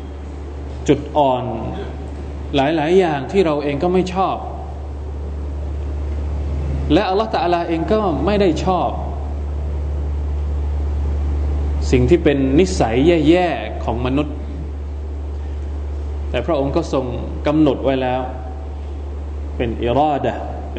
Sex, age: male, 20-39